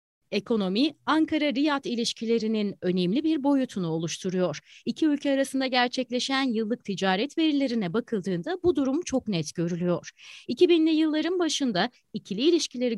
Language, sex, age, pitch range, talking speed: Turkish, female, 30-49, 190-285 Hz, 115 wpm